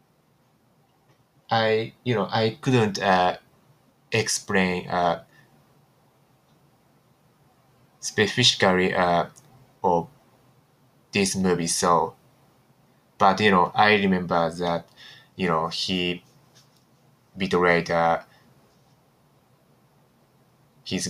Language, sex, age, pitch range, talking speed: English, male, 20-39, 90-130 Hz, 75 wpm